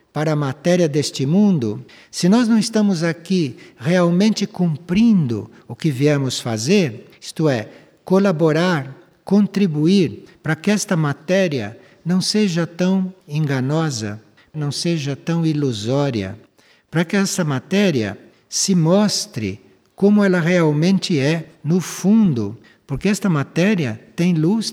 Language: Portuguese